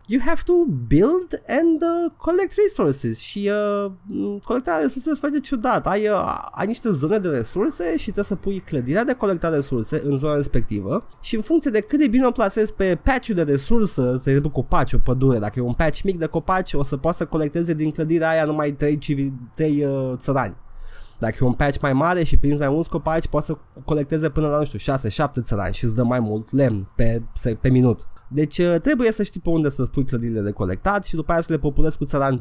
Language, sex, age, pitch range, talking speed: Romanian, male, 20-39, 125-185 Hz, 220 wpm